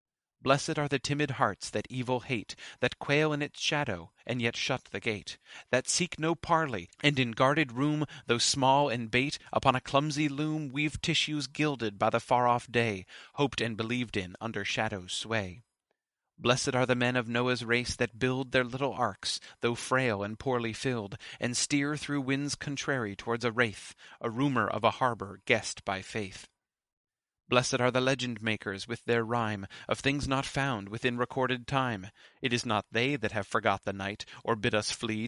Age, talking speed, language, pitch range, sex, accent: 30-49, 185 wpm, English, 110-135 Hz, male, American